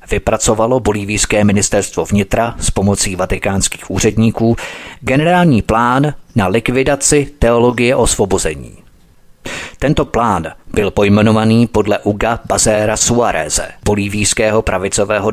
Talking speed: 95 wpm